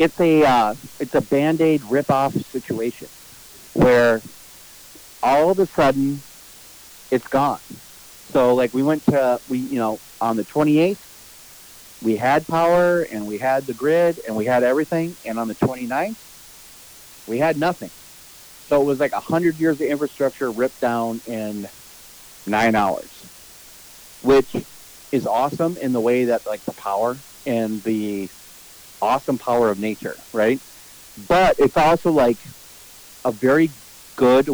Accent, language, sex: American, English, male